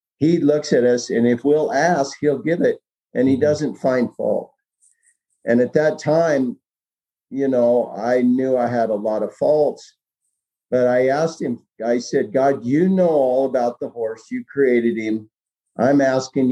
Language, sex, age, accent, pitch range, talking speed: English, male, 50-69, American, 115-150 Hz, 175 wpm